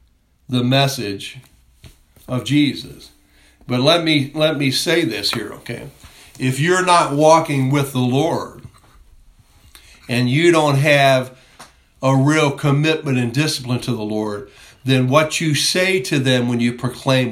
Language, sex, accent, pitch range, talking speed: English, male, American, 110-135 Hz, 140 wpm